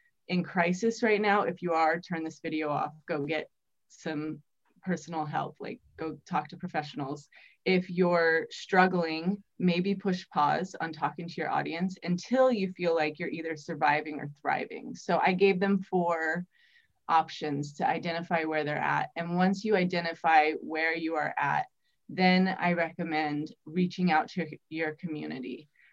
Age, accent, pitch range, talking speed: 20-39, American, 160-190 Hz, 155 wpm